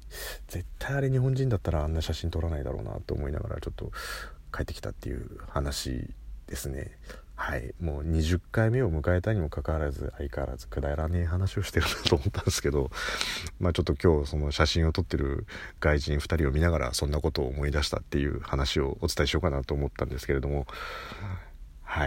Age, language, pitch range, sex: 40-59, Japanese, 75-100 Hz, male